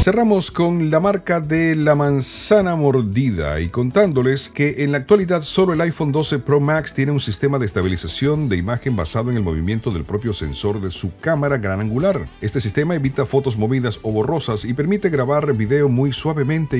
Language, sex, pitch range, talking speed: Spanish, male, 105-145 Hz, 185 wpm